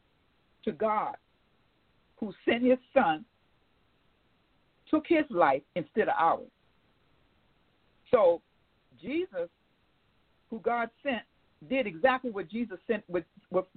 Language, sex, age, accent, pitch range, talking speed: English, female, 50-69, American, 200-280 Hz, 100 wpm